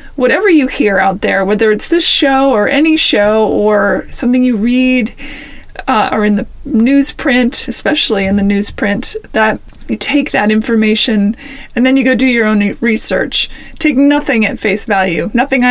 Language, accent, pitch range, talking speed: English, American, 215-275 Hz, 170 wpm